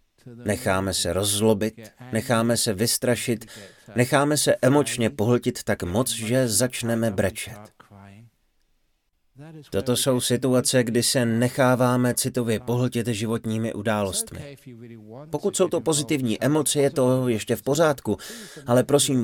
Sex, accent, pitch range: male, native, 100-125 Hz